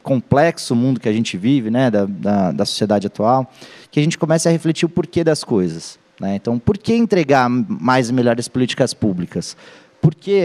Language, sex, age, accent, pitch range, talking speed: Portuguese, male, 20-39, Brazilian, 120-155 Hz, 195 wpm